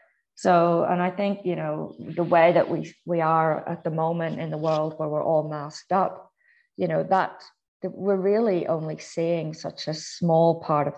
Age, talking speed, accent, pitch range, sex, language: 30-49, 195 wpm, British, 150-170 Hz, female, English